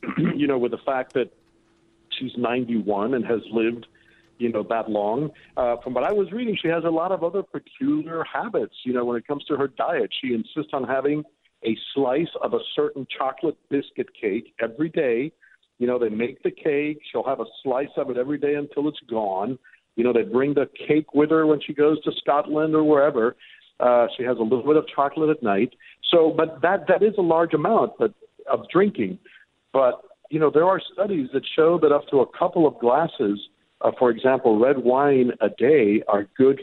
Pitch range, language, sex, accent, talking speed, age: 120-155 Hz, English, male, American, 210 wpm, 50-69